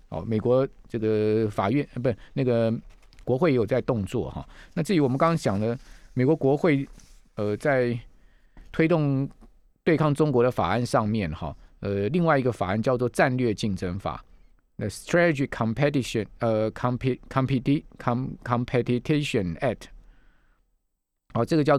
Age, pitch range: 50-69, 105-140 Hz